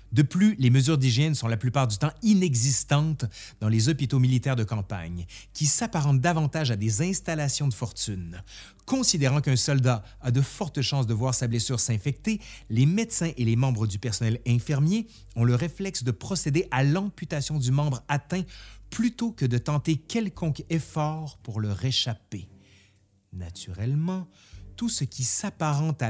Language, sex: French, male